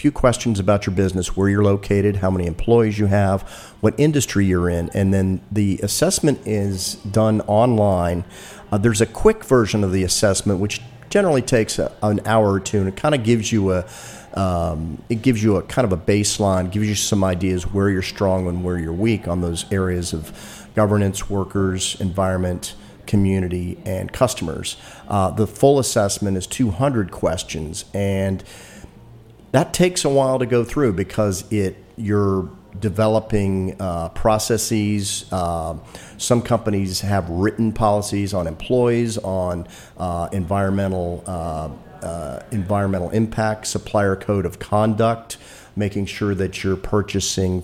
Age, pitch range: 40-59, 95-110 Hz